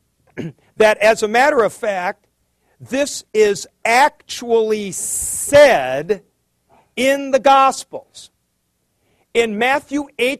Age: 50-69